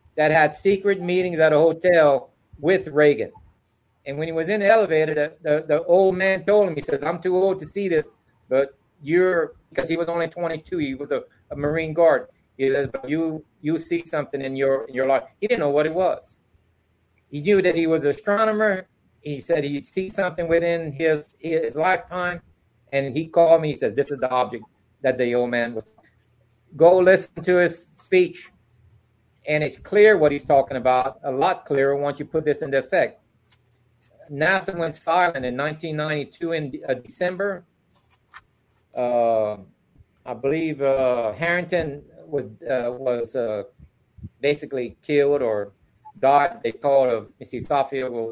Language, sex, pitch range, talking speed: English, male, 125-170 Hz, 175 wpm